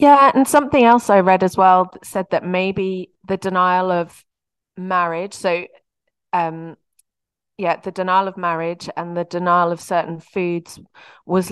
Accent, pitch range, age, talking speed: British, 170-195 Hz, 30-49, 150 wpm